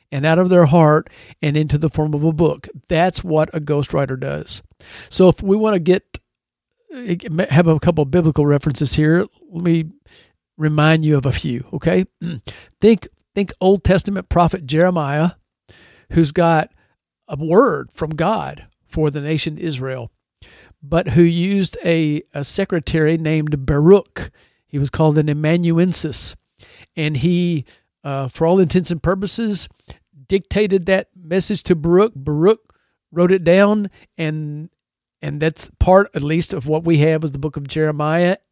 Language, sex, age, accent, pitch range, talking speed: English, male, 50-69, American, 150-185 Hz, 155 wpm